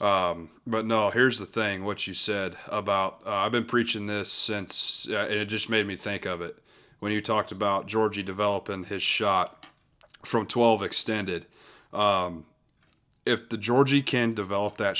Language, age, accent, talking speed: English, 30-49, American, 165 wpm